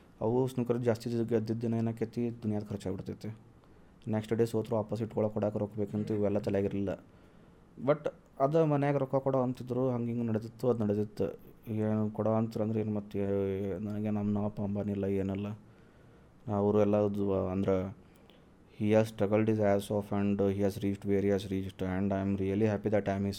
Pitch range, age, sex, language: 100-125 Hz, 20-39, male, Kannada